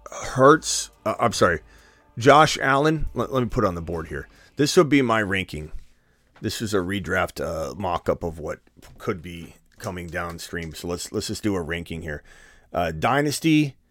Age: 30-49